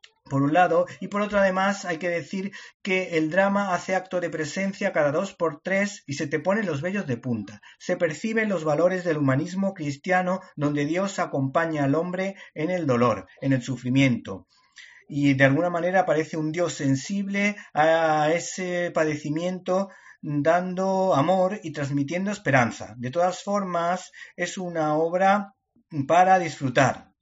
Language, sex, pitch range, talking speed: Spanish, male, 140-190 Hz, 155 wpm